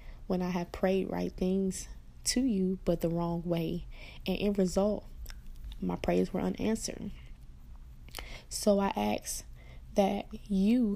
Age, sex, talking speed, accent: 10-29, female, 130 wpm, American